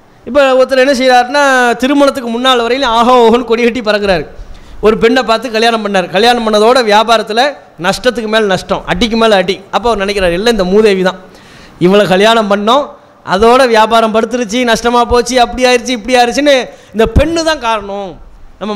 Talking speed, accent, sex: 175 wpm, Indian, male